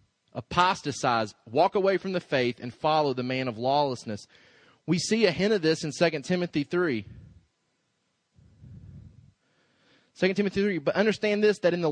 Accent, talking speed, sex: American, 160 wpm, male